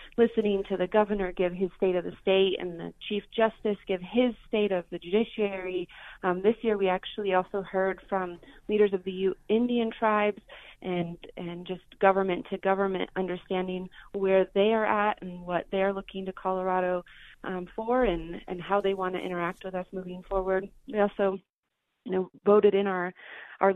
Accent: American